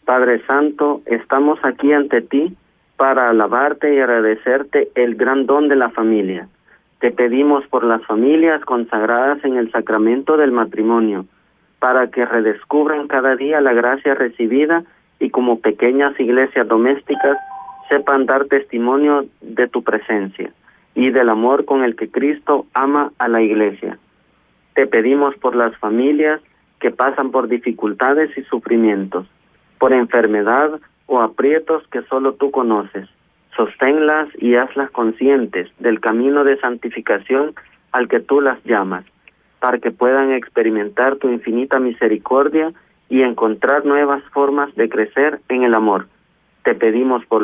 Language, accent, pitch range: Spanish, Mexican, 115-140 Hz